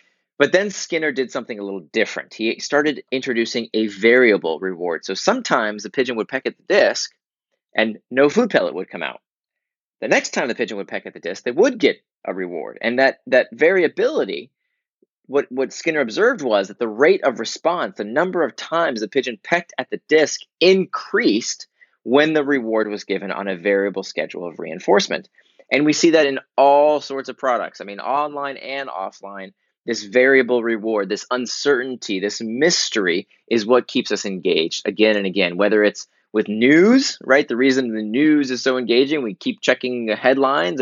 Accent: American